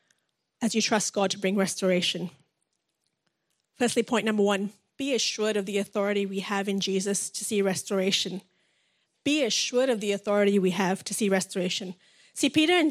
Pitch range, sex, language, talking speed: 195-235 Hz, female, English, 165 wpm